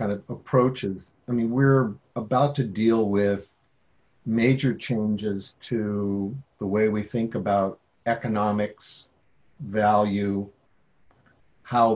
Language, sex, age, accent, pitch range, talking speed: English, male, 50-69, American, 100-120 Hz, 105 wpm